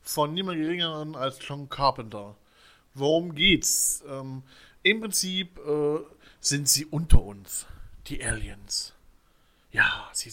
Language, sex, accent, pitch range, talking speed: German, male, German, 115-150 Hz, 115 wpm